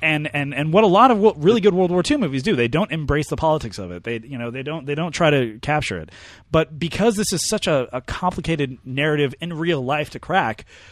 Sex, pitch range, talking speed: male, 110-155 Hz, 255 wpm